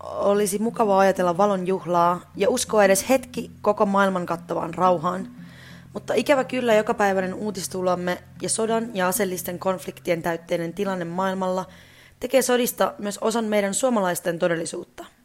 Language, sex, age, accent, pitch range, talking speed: Finnish, female, 20-39, native, 180-210 Hz, 130 wpm